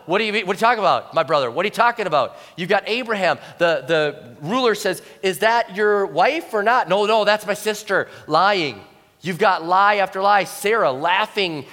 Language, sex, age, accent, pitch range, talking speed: English, male, 30-49, American, 190-250 Hz, 200 wpm